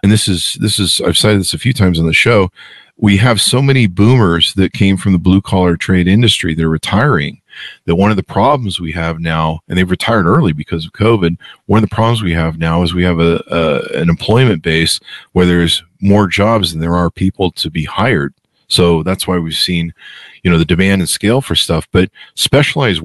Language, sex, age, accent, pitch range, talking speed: English, male, 50-69, American, 85-105 Hz, 220 wpm